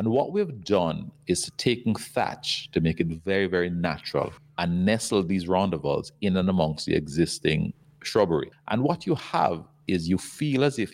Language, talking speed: English, 175 wpm